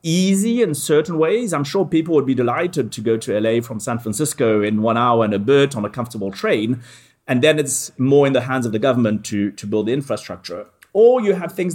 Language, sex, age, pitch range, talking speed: English, male, 30-49, 115-155 Hz, 235 wpm